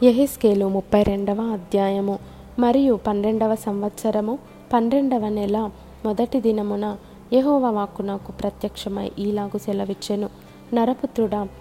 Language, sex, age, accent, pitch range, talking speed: Telugu, female, 20-39, native, 205-230 Hz, 90 wpm